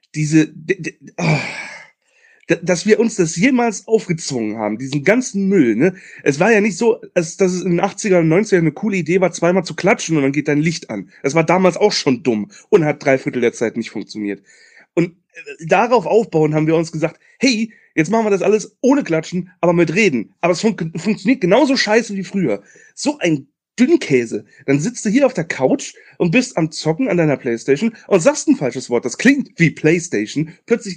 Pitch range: 165-240 Hz